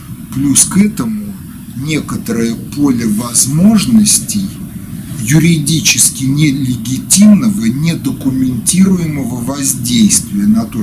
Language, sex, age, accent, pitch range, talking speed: Russian, male, 50-69, native, 140-205 Hz, 65 wpm